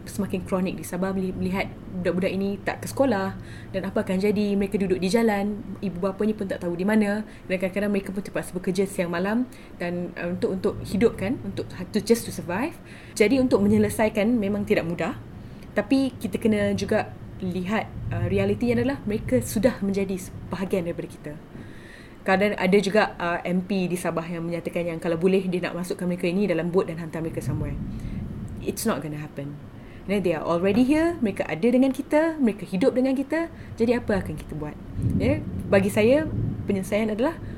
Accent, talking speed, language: Malaysian, 175 wpm, Indonesian